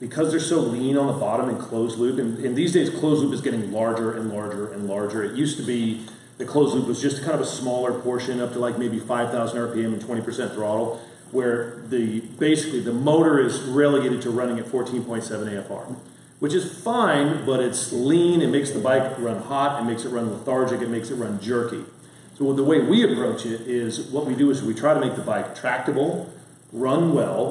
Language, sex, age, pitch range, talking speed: English, male, 40-59, 115-140 Hz, 220 wpm